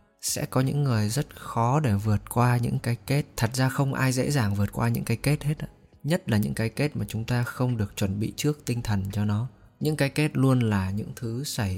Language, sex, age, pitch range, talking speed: Vietnamese, male, 20-39, 105-135 Hz, 250 wpm